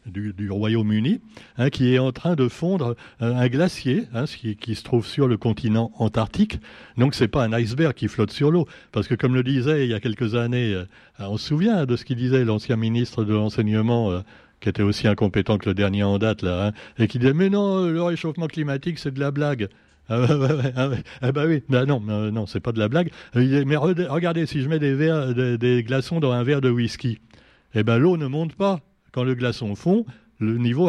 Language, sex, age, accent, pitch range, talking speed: French, male, 60-79, French, 115-150 Hz, 235 wpm